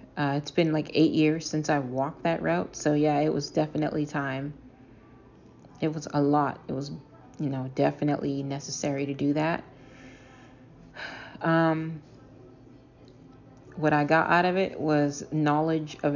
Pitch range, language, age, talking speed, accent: 140-160 Hz, English, 30-49, 150 wpm, American